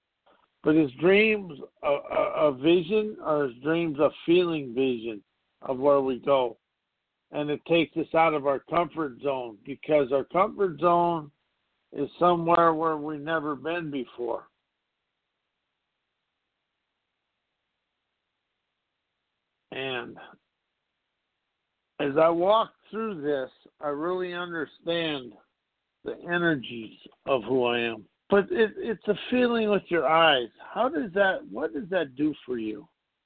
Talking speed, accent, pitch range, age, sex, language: 125 wpm, American, 150-185 Hz, 60-79, male, English